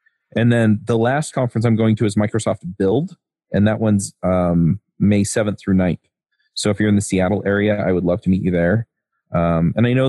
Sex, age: male, 30-49